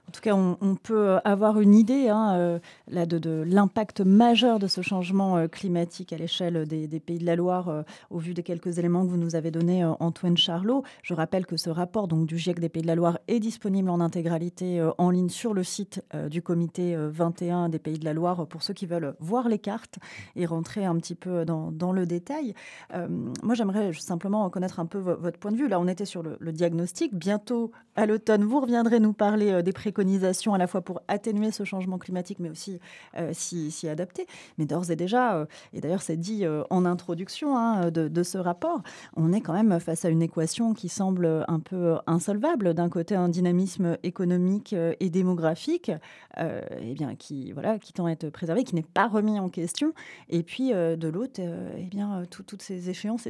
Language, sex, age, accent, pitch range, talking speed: French, female, 30-49, French, 170-205 Hz, 205 wpm